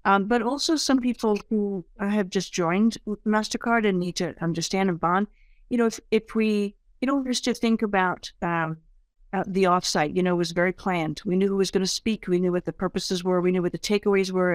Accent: American